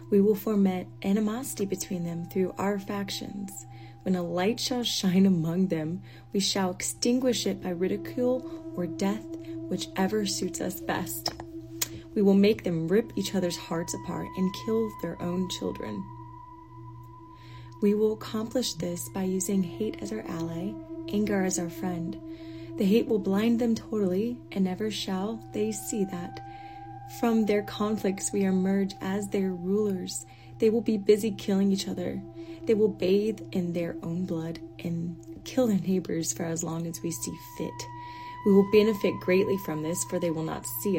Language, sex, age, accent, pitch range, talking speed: English, female, 30-49, American, 150-200 Hz, 165 wpm